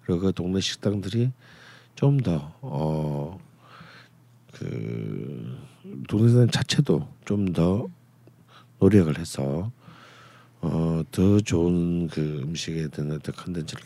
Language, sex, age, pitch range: Korean, male, 50-69, 85-125 Hz